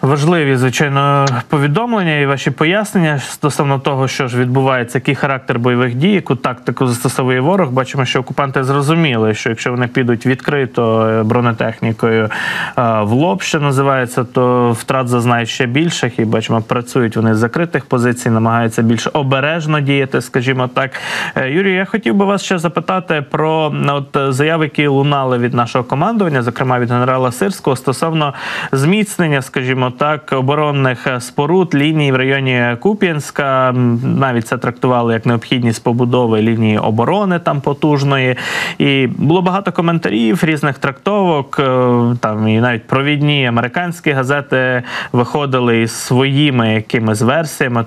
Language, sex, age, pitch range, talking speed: Ukrainian, male, 20-39, 120-150 Hz, 135 wpm